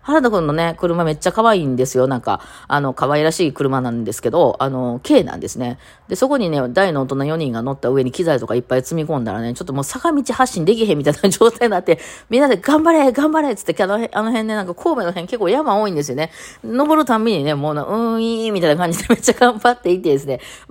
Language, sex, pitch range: Japanese, female, 125-200 Hz